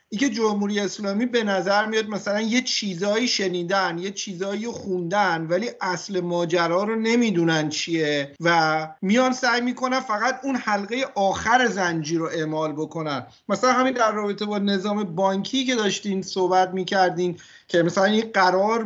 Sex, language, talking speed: male, Persian, 150 wpm